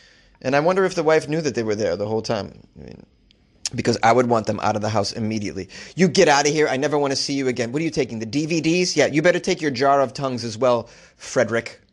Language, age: English, 30-49